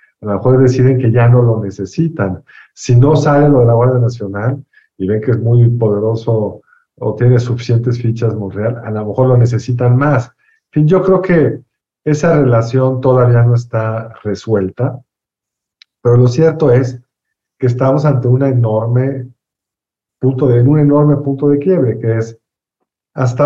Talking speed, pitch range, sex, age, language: 165 wpm, 115-135 Hz, male, 50-69, Spanish